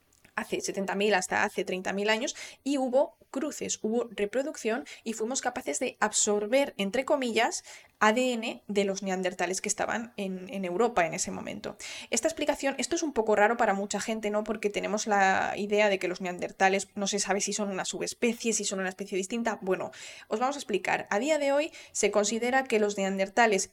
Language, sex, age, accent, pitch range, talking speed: Spanish, female, 10-29, Spanish, 195-235 Hz, 190 wpm